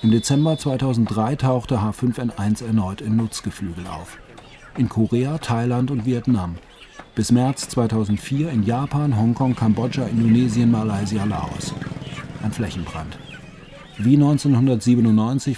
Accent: German